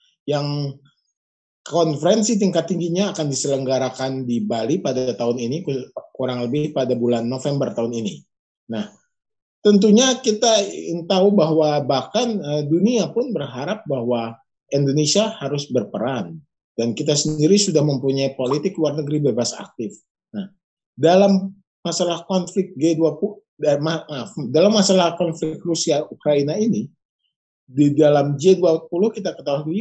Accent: native